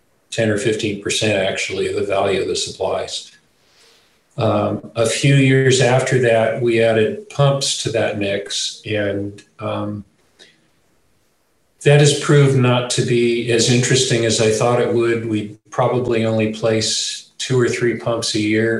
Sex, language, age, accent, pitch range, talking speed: male, English, 40-59, American, 110-125 Hz, 150 wpm